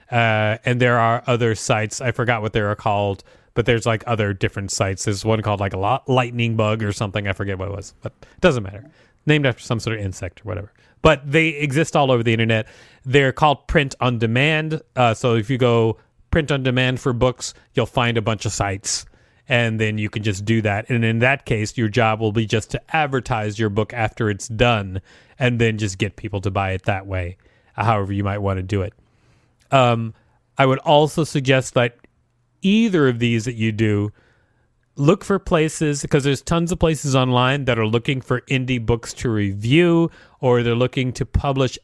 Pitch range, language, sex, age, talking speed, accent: 110-135 Hz, English, male, 30-49, 210 wpm, American